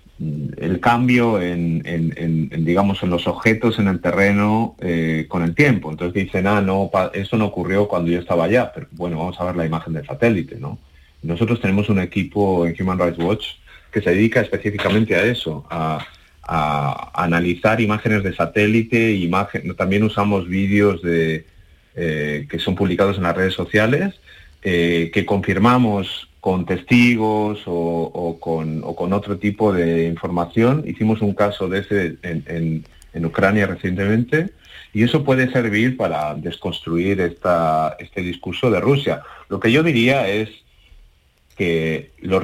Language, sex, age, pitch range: Spanish, male, 30-49, 85-105 Hz